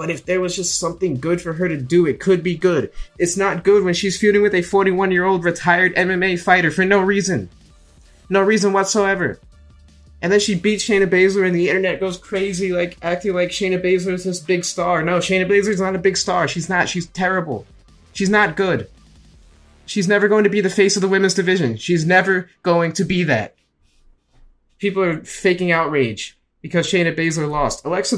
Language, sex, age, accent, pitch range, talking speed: English, male, 20-39, American, 145-185 Hz, 200 wpm